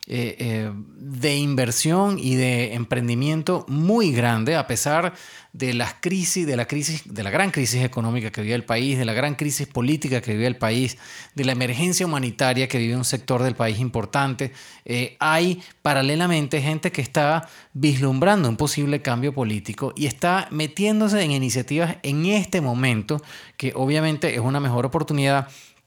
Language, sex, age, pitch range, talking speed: English, male, 30-49, 120-150 Hz, 160 wpm